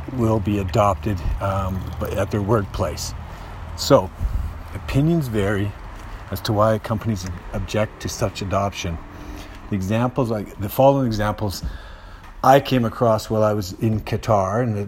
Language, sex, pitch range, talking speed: English, male, 95-115 Hz, 135 wpm